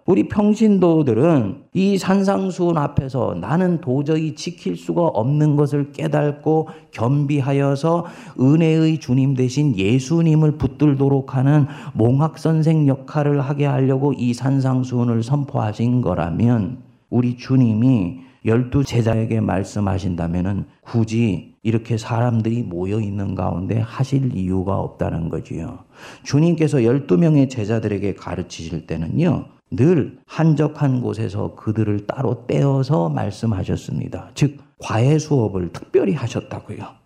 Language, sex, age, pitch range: Korean, male, 40-59, 110-150 Hz